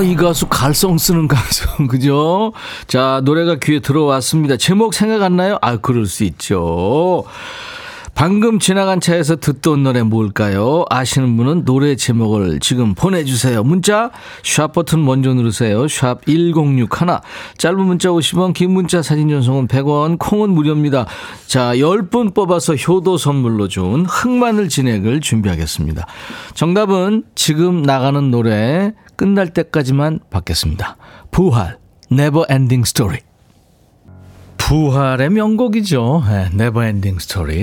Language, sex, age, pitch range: Korean, male, 40-59, 110-170 Hz